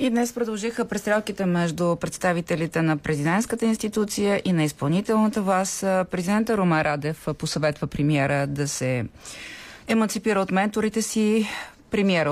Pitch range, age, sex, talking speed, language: 150-210 Hz, 30-49, female, 120 wpm, Bulgarian